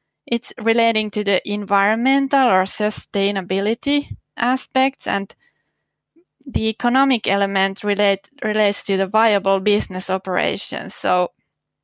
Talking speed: 100 wpm